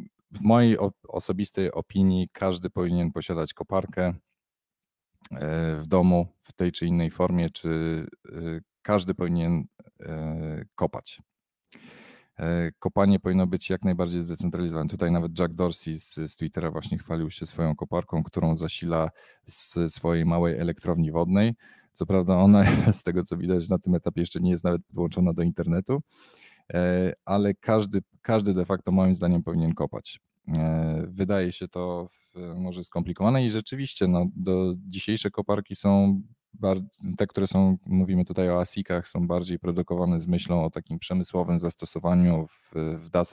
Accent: native